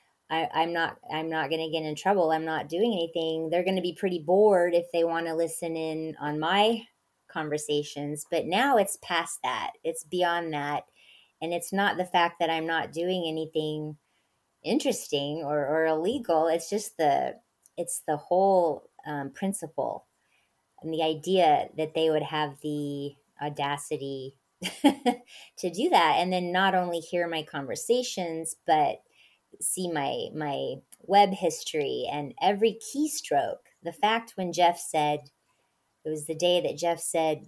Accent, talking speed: American, 155 wpm